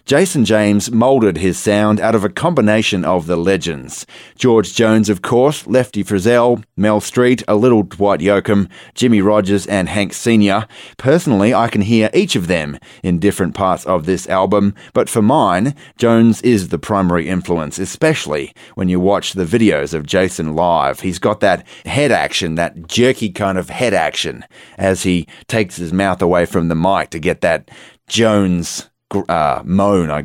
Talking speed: 170 wpm